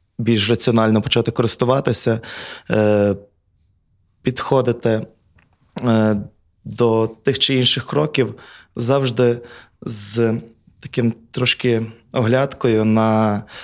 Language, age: Ukrainian, 20-39